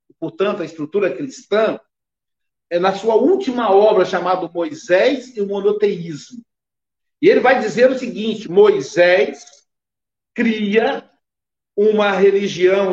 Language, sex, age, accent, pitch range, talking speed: Portuguese, male, 60-79, Brazilian, 195-285 Hz, 110 wpm